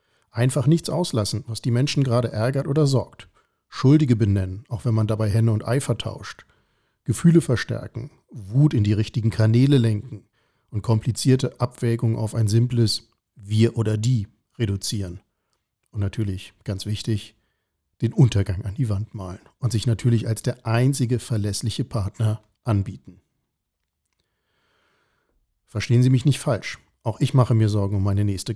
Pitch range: 105-125 Hz